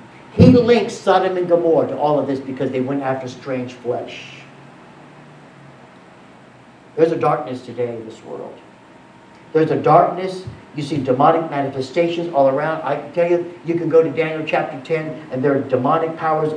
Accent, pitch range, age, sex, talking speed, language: American, 135-185 Hz, 60-79, male, 170 wpm, English